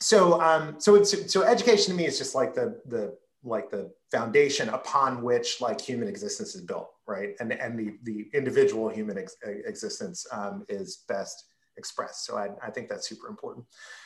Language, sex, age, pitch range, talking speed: English, male, 30-49, 140-225 Hz, 185 wpm